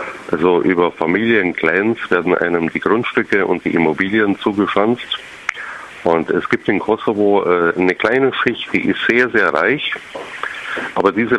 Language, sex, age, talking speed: German, male, 50-69, 135 wpm